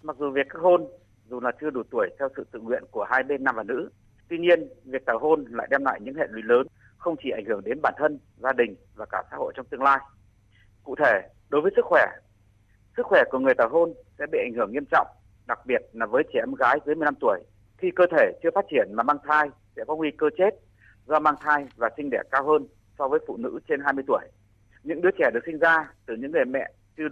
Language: Vietnamese